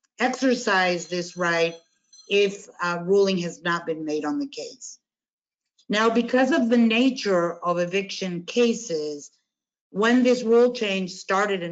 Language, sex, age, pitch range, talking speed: English, female, 50-69, 175-225 Hz, 140 wpm